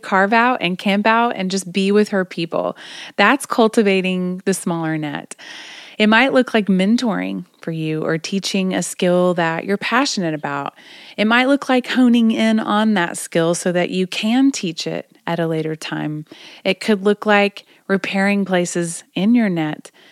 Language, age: English, 30-49